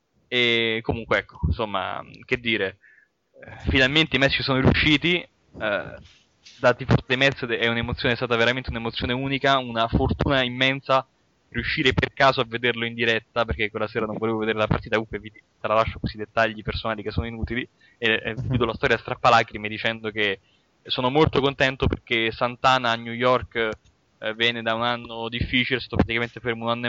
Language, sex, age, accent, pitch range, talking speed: Italian, male, 20-39, native, 110-125 Hz, 175 wpm